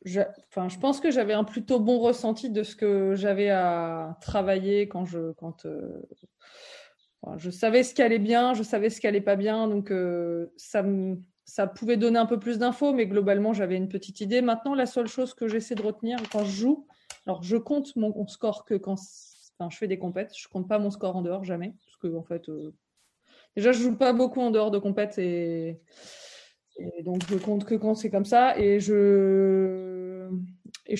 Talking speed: 210 wpm